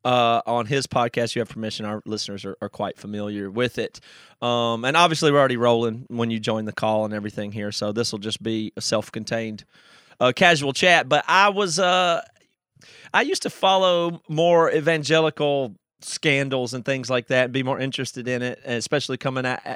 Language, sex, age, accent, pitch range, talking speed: English, male, 30-49, American, 115-155 Hz, 185 wpm